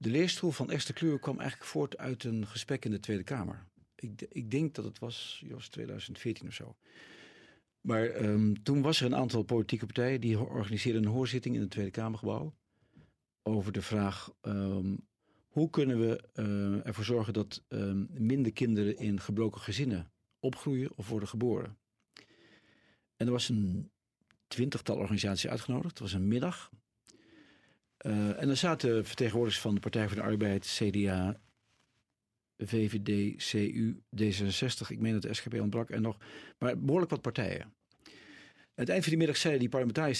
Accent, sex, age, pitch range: Dutch, male, 50-69, 105-125 Hz